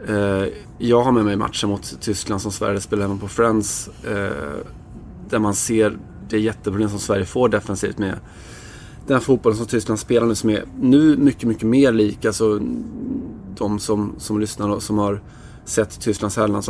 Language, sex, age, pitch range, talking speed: Swedish, male, 20-39, 105-115 Hz, 175 wpm